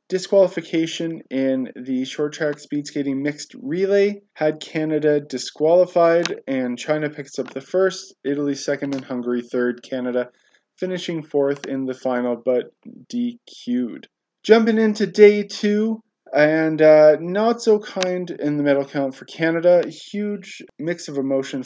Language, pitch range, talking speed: English, 145-190 Hz, 140 wpm